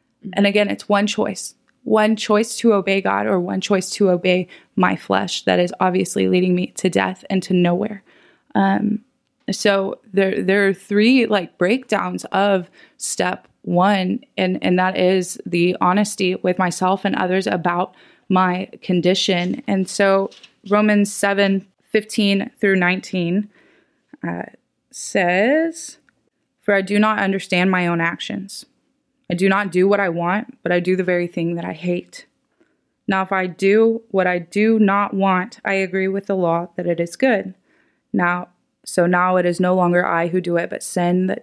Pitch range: 180-205 Hz